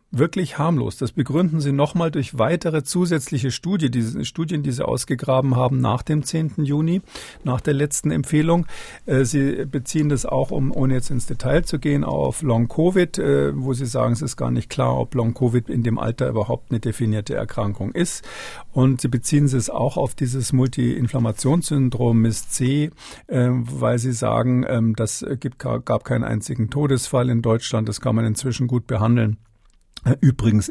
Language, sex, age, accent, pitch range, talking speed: German, male, 50-69, German, 115-140 Hz, 160 wpm